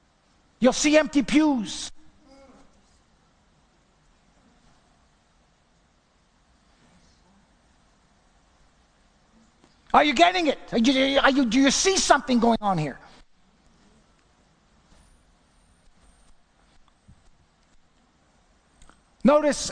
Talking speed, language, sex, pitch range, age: 50 wpm, English, male, 200-275 Hz, 50-69